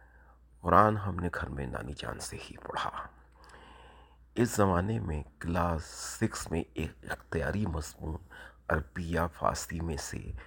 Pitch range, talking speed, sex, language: 75-95 Hz, 130 wpm, male, Urdu